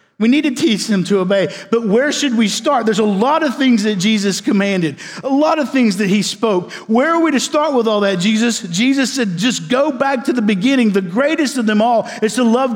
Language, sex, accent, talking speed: English, male, American, 245 wpm